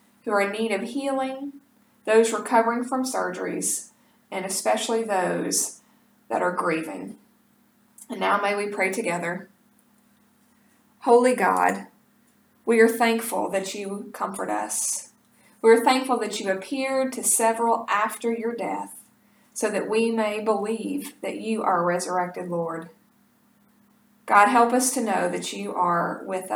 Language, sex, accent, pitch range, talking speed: English, female, American, 205-230 Hz, 140 wpm